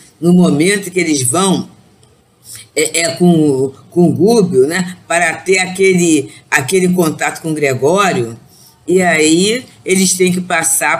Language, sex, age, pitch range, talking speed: Portuguese, female, 50-69, 150-190 Hz, 135 wpm